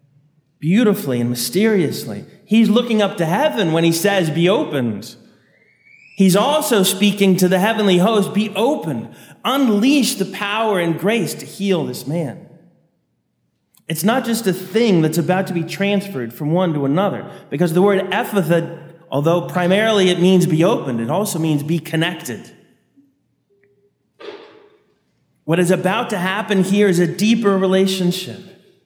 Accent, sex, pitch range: American, male, 165-215 Hz